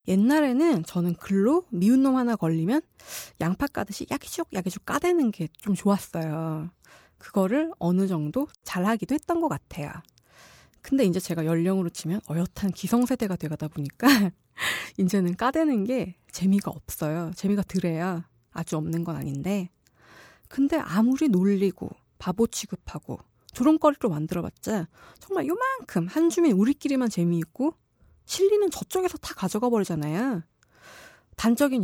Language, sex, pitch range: Korean, female, 175-260 Hz